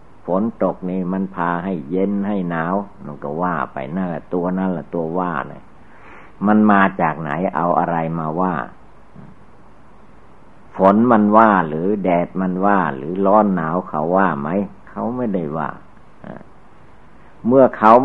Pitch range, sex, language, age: 85-105 Hz, male, Thai, 60-79